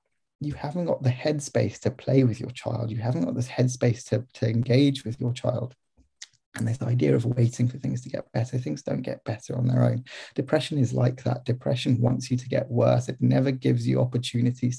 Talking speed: 215 wpm